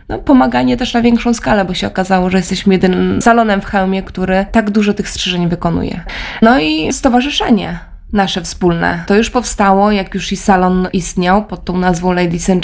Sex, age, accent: female, 20-39, native